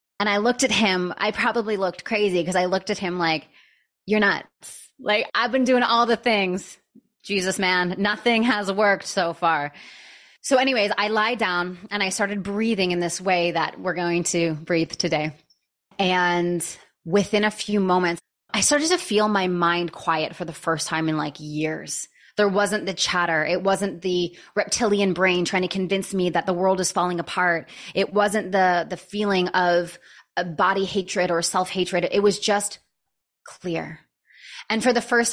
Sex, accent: female, American